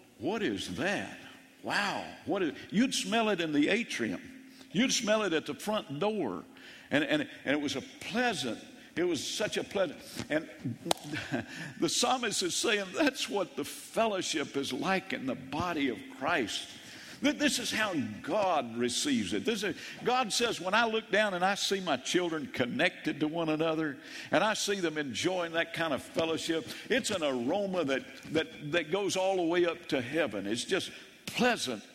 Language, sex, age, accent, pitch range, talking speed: English, male, 50-69, American, 175-255 Hz, 175 wpm